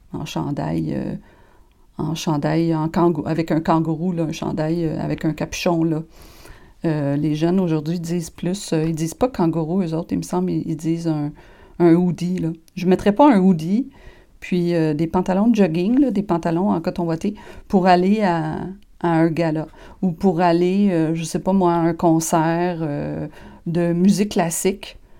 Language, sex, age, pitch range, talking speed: French, female, 40-59, 165-195 Hz, 190 wpm